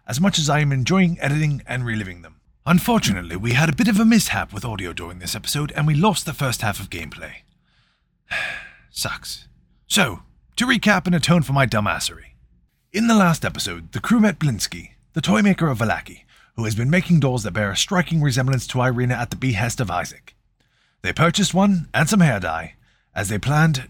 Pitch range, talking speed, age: 105-160 Hz, 200 wpm, 30-49